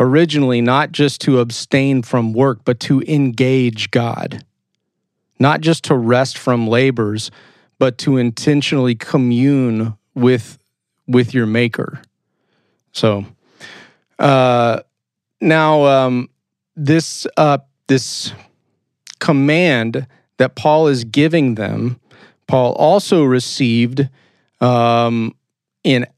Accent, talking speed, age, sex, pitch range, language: American, 100 wpm, 40-59, male, 120-150 Hz, English